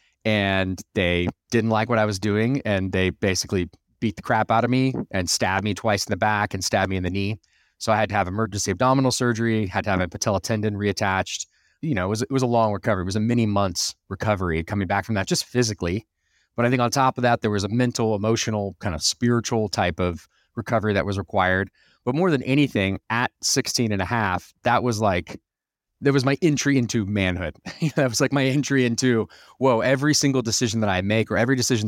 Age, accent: 30-49, American